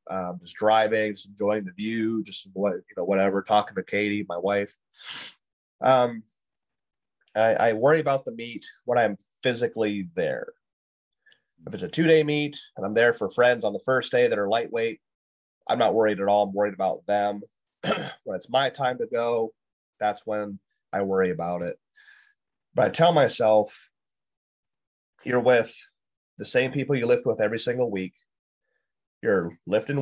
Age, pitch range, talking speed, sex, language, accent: 30-49, 100-130 Hz, 165 wpm, male, English, American